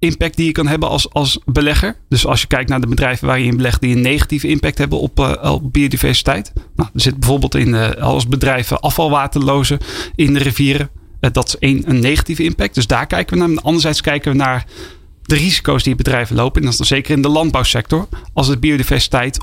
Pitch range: 130-150 Hz